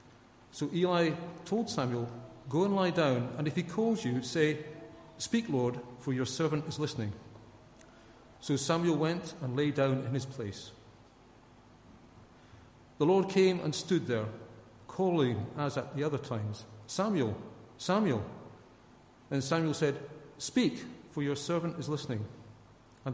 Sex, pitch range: male, 120-160 Hz